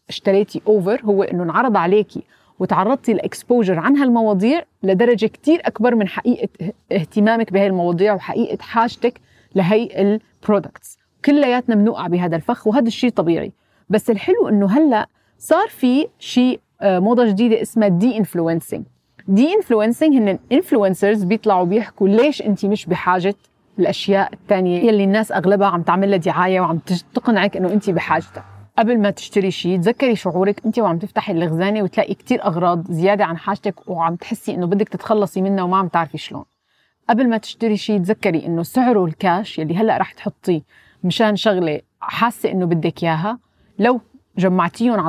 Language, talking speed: Arabic, 150 wpm